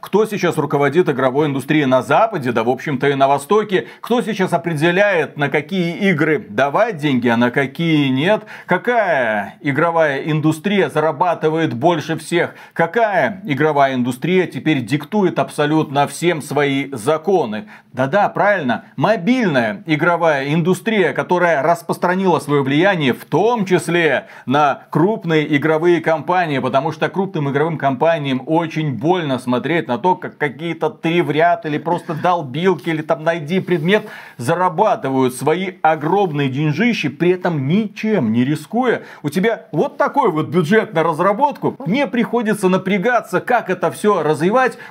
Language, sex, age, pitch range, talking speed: Russian, male, 40-59, 150-205 Hz, 135 wpm